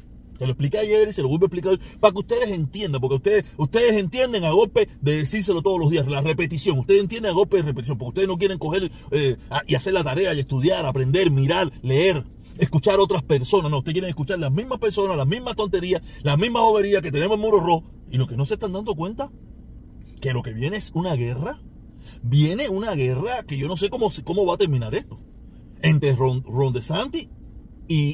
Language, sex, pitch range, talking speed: Spanish, male, 140-210 Hz, 220 wpm